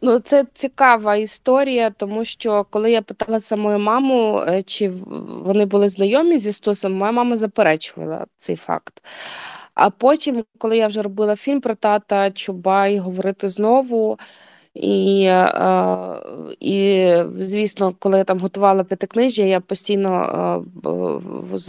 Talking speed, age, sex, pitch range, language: 125 wpm, 20-39, female, 190-225 Hz, Ukrainian